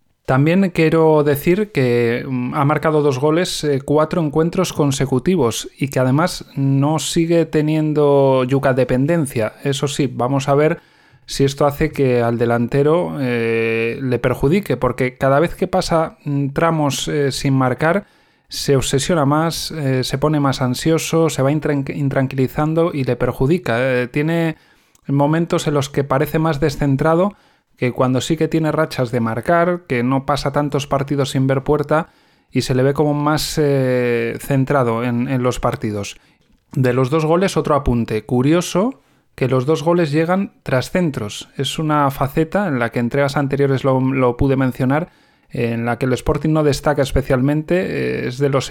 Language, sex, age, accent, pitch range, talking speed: Spanish, male, 20-39, Spanish, 130-160 Hz, 160 wpm